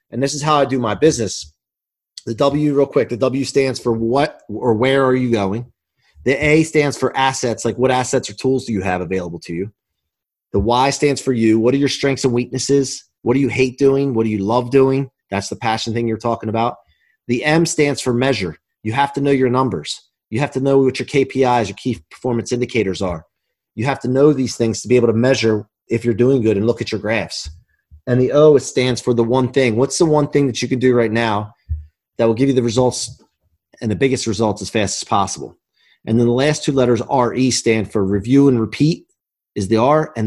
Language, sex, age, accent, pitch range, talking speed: English, male, 30-49, American, 110-135 Hz, 235 wpm